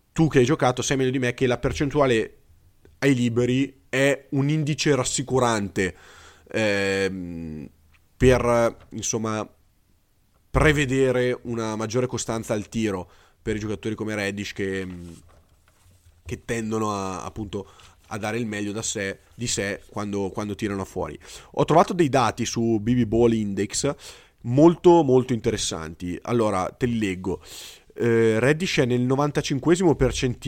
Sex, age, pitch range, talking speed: male, 30-49, 105-140 Hz, 135 wpm